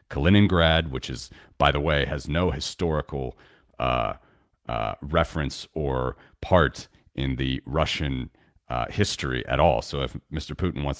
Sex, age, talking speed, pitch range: male, 40-59, 140 wpm, 65-80 Hz